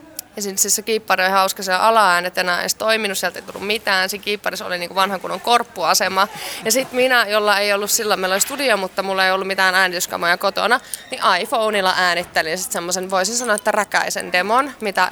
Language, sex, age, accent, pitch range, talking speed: Finnish, female, 20-39, native, 180-210 Hz, 185 wpm